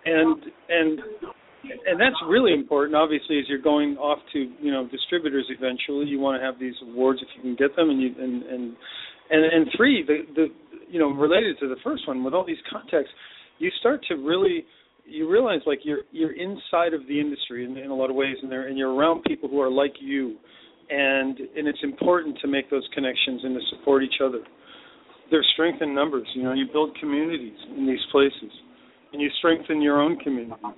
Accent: American